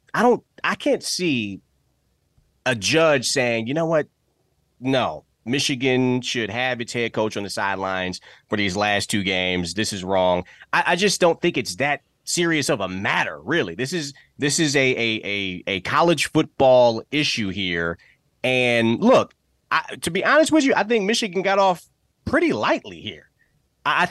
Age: 30-49